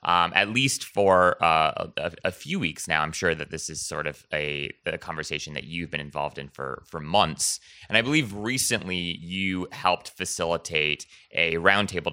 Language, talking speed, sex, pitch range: English, 185 wpm, male, 80-100 Hz